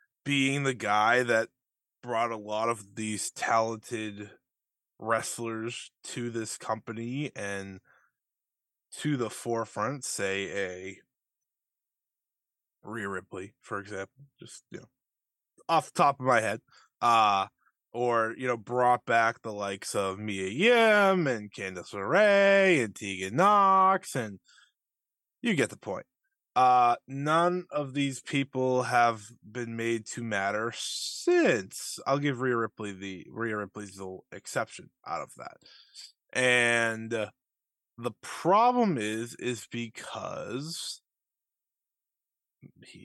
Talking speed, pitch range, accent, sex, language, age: 115 wpm, 110-145 Hz, American, male, English, 20-39